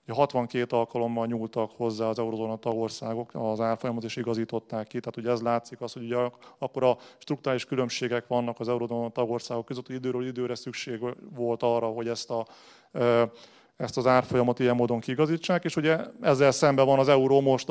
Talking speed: 165 wpm